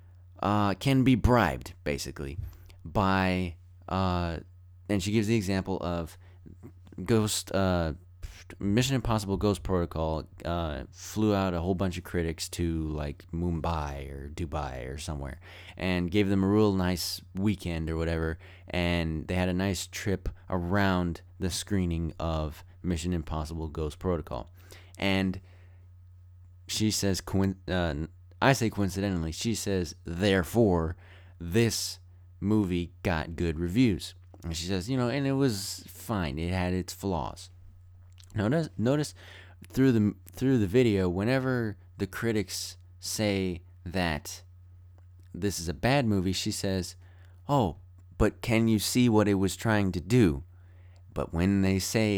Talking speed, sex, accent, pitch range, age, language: 135 wpm, male, American, 90-100 Hz, 30-49, English